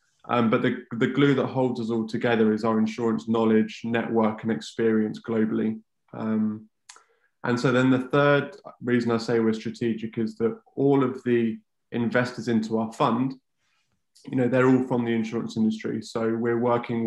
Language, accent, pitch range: English, British, 115-120 Hz